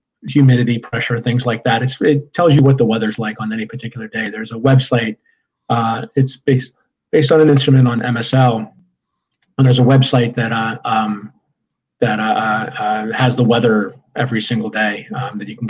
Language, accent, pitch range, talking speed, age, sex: English, American, 115-135 Hz, 185 wpm, 40-59, male